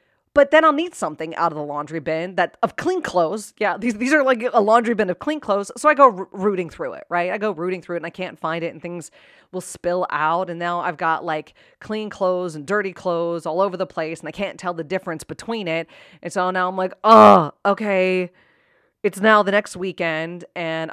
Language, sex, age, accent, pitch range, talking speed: English, female, 30-49, American, 170-255 Hz, 240 wpm